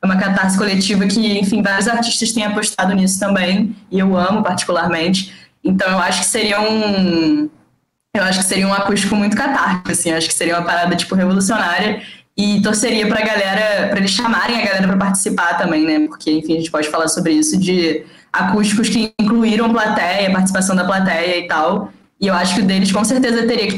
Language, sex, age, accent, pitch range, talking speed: Portuguese, female, 10-29, Brazilian, 180-215 Hz, 200 wpm